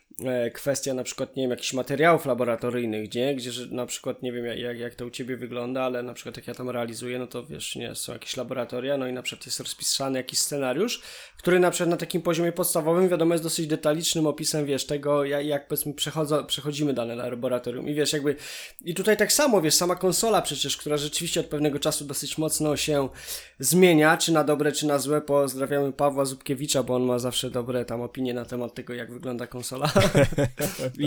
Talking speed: 205 wpm